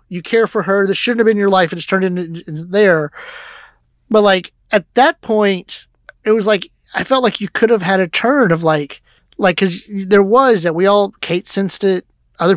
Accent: American